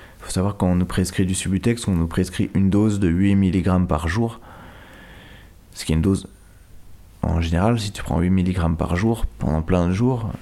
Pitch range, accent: 85-105 Hz, French